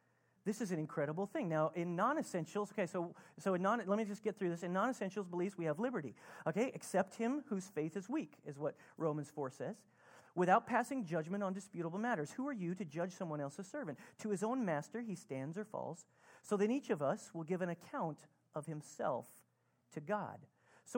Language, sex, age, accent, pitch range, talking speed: English, male, 40-59, American, 170-230 Hz, 210 wpm